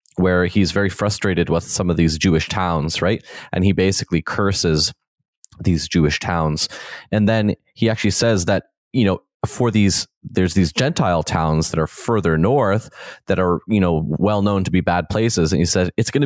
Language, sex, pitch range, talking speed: English, male, 85-110 Hz, 190 wpm